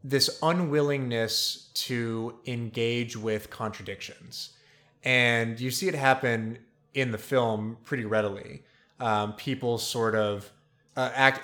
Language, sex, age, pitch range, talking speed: English, male, 30-49, 110-135 Hz, 115 wpm